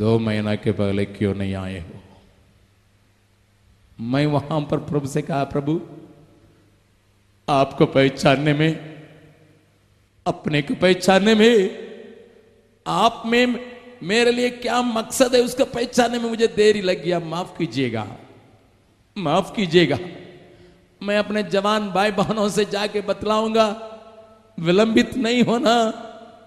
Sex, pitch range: male, 135-230 Hz